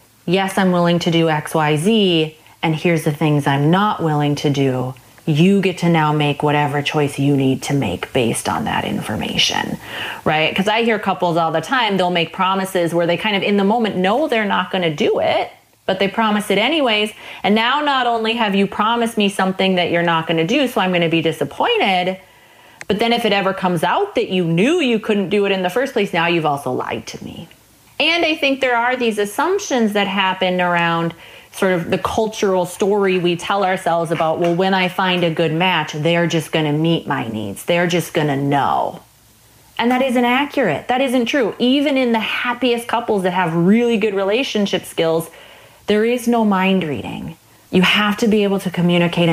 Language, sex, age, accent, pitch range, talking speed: English, female, 30-49, American, 165-215 Hz, 215 wpm